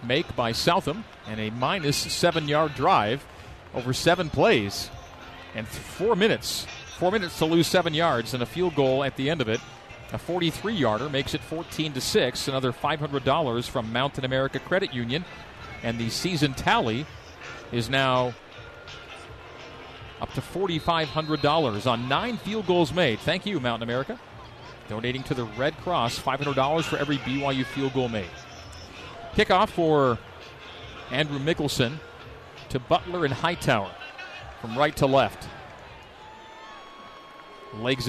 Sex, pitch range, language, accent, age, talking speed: male, 120-185 Hz, English, American, 40-59, 140 wpm